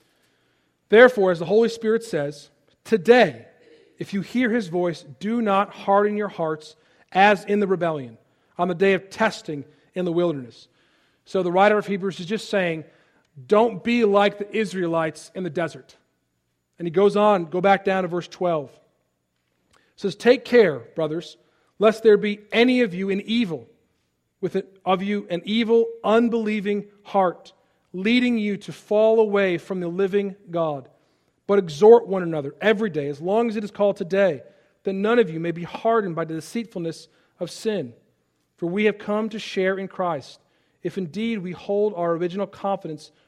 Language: English